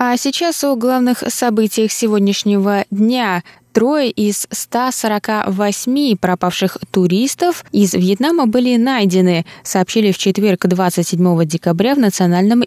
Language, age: Russian, 20-39